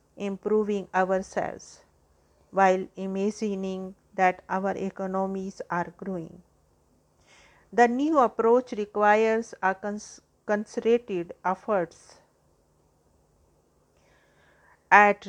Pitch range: 185-210 Hz